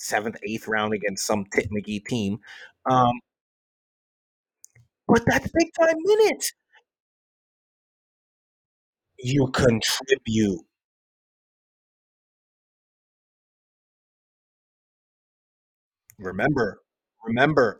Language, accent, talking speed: English, American, 55 wpm